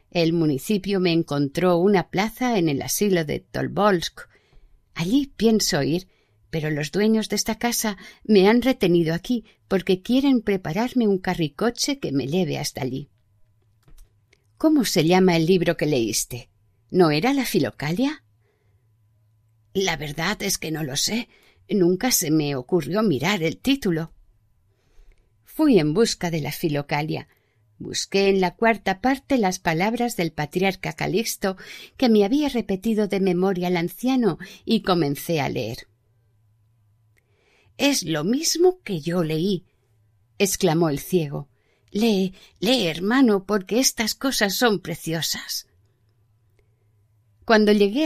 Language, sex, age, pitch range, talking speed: Spanish, female, 50-69, 145-210 Hz, 130 wpm